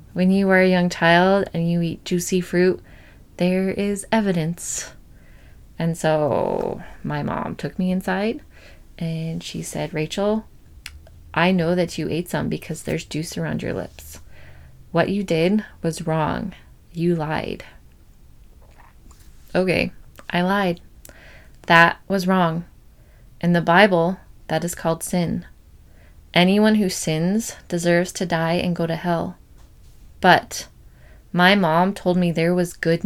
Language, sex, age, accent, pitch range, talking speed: English, female, 20-39, American, 155-185 Hz, 135 wpm